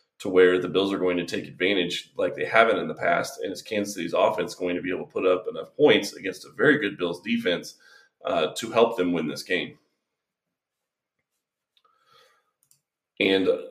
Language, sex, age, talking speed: English, male, 30-49, 190 wpm